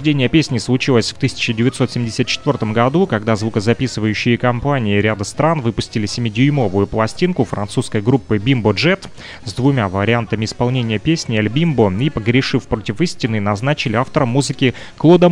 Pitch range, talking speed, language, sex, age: 110-140 Hz, 130 wpm, Russian, male, 30-49